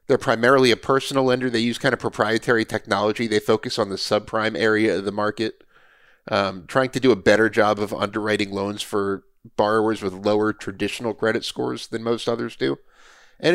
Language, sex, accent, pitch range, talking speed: English, male, American, 105-140 Hz, 185 wpm